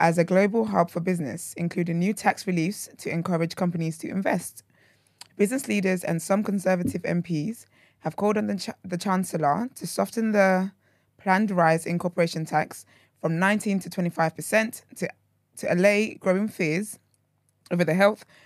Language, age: English, 20-39